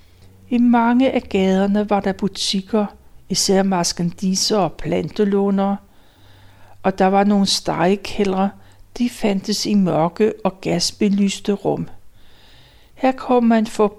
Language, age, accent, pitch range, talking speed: Danish, 60-79, native, 175-225 Hz, 115 wpm